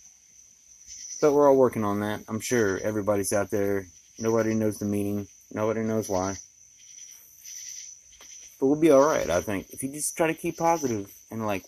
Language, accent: English, American